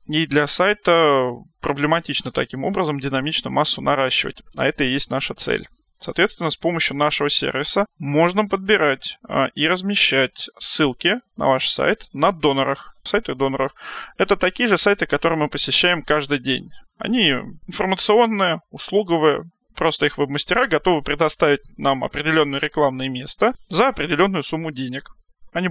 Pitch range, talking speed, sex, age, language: 145-185 Hz, 135 wpm, male, 20-39, Russian